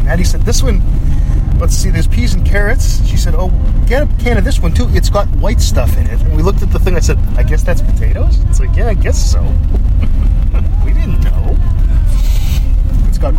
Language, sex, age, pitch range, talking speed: English, male, 30-49, 75-100 Hz, 220 wpm